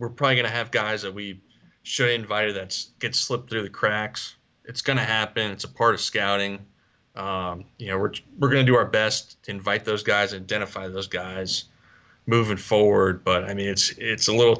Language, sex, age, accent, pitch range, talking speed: English, male, 20-39, American, 95-120 Hz, 215 wpm